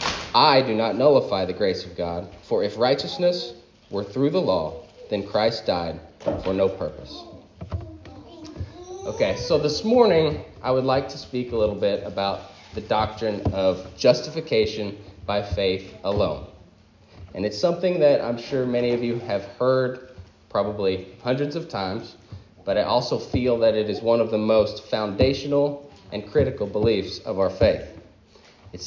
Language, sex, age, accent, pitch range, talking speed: English, male, 30-49, American, 100-150 Hz, 155 wpm